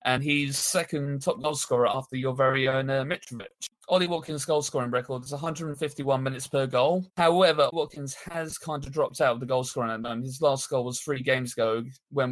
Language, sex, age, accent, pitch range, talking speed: English, male, 30-49, British, 130-150 Hz, 200 wpm